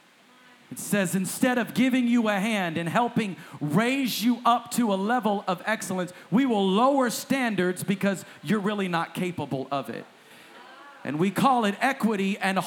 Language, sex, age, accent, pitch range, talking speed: English, male, 40-59, American, 180-240 Hz, 165 wpm